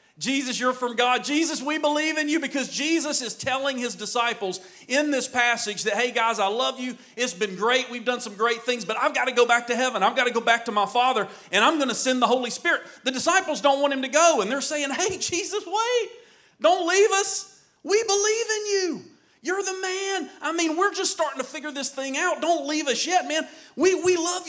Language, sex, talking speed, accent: English, male, 240 wpm, American